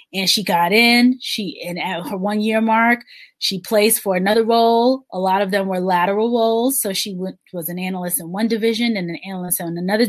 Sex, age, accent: female, 20-39, American